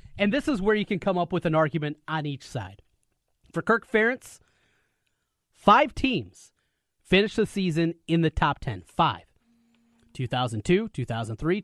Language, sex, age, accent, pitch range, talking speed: English, male, 30-49, American, 125-205 Hz, 150 wpm